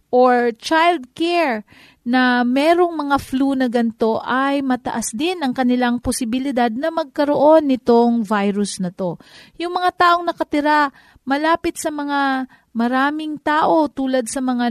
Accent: native